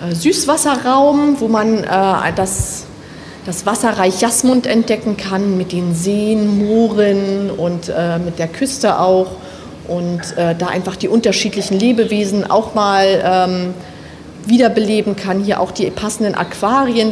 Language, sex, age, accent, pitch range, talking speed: German, female, 30-49, German, 180-215 Hz, 130 wpm